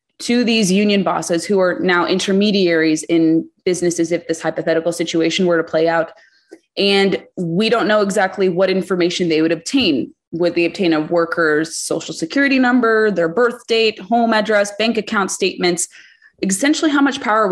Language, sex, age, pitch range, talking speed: English, female, 20-39, 170-215 Hz, 170 wpm